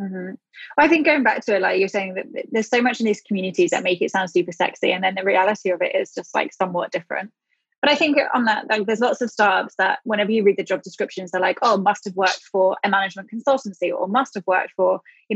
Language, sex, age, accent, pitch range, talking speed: English, female, 20-39, British, 185-220 Hz, 260 wpm